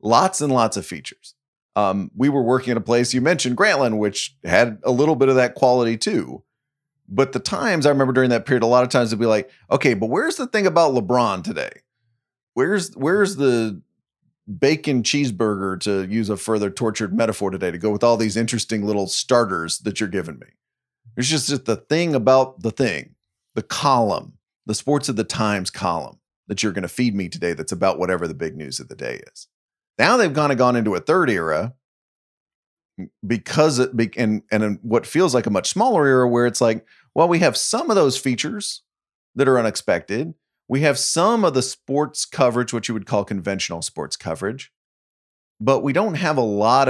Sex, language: male, English